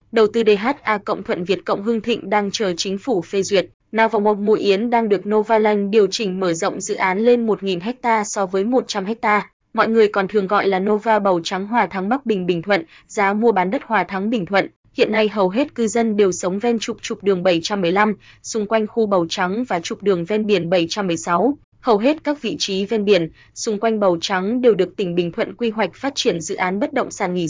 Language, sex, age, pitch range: Vietnamese, female, 20-39, 190-225 Hz